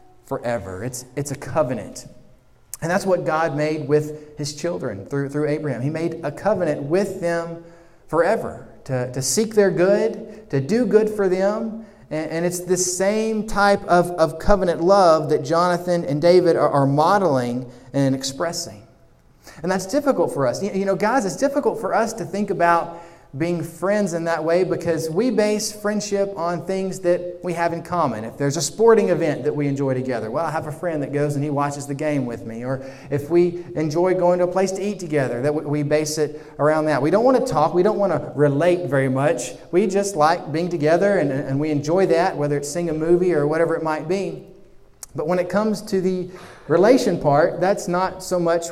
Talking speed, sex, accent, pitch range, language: 205 wpm, male, American, 150-195 Hz, English